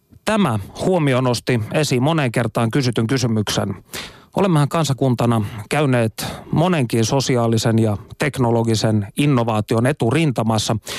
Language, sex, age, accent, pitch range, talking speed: Finnish, male, 30-49, native, 115-155 Hz, 95 wpm